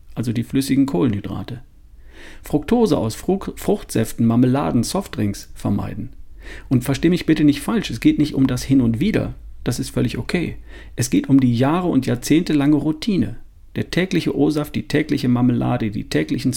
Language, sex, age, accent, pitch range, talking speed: German, male, 50-69, German, 115-145 Hz, 165 wpm